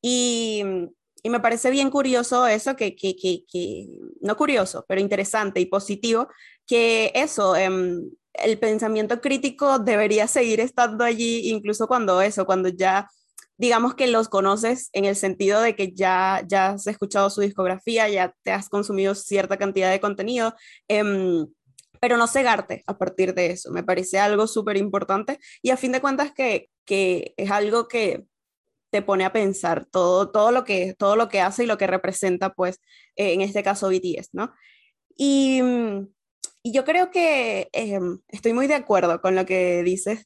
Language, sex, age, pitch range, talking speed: English, female, 20-39, 190-235 Hz, 170 wpm